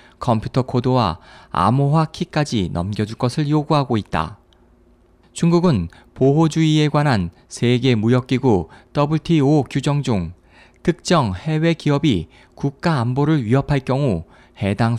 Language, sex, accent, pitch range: Korean, male, native, 115-150 Hz